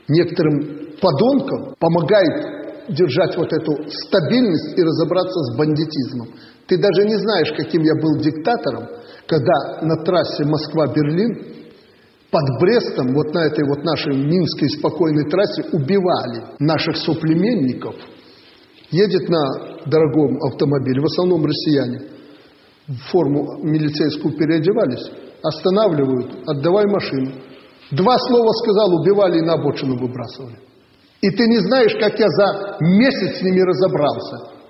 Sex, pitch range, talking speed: male, 150-195 Hz, 120 wpm